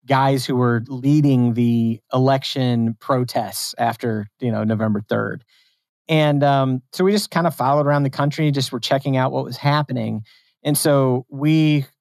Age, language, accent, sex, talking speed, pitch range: 40-59, English, American, male, 165 wpm, 120-140 Hz